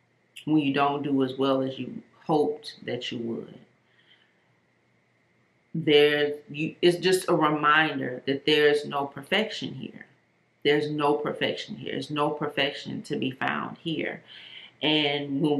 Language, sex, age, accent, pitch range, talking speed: English, female, 30-49, American, 145-185 Hz, 130 wpm